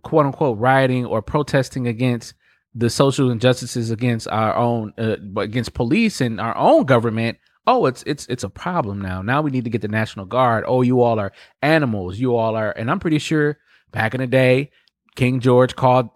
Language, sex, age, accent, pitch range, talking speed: English, male, 20-39, American, 110-130 Hz, 200 wpm